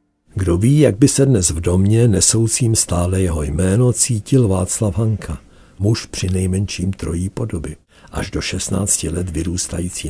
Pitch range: 80-110 Hz